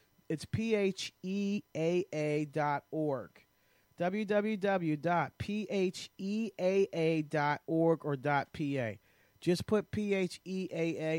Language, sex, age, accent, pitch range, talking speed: English, male, 40-59, American, 145-190 Hz, 75 wpm